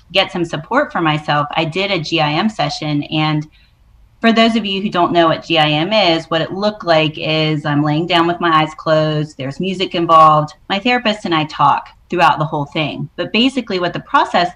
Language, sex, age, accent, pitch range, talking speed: English, female, 30-49, American, 150-175 Hz, 205 wpm